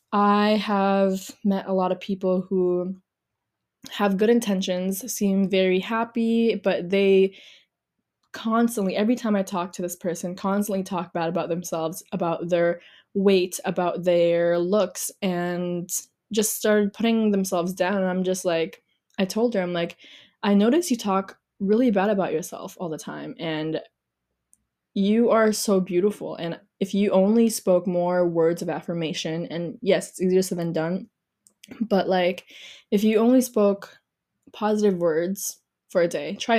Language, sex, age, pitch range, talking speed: English, female, 20-39, 180-210 Hz, 155 wpm